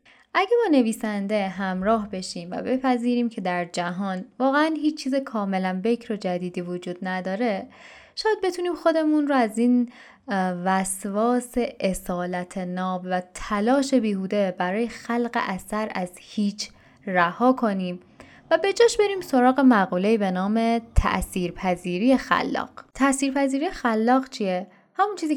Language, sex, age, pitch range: Persian, female, 10-29, 185-250 Hz